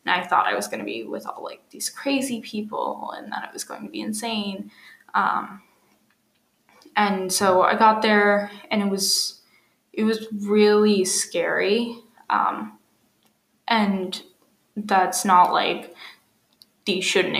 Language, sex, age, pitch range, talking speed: English, female, 10-29, 190-220 Hz, 145 wpm